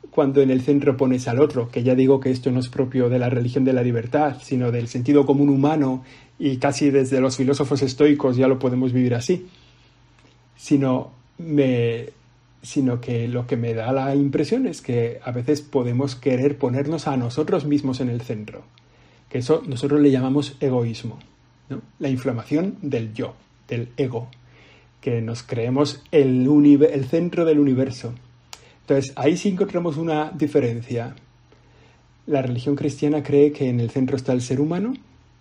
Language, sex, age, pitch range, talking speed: Spanish, male, 50-69, 125-145 Hz, 165 wpm